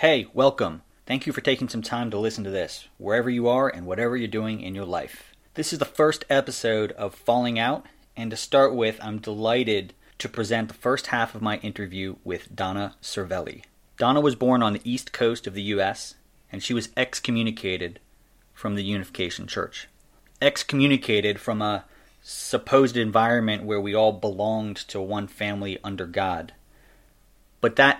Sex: male